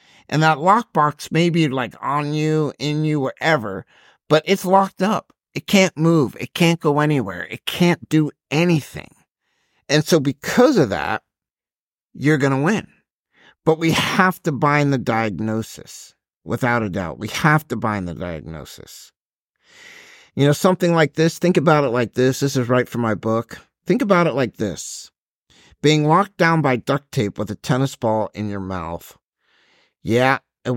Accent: American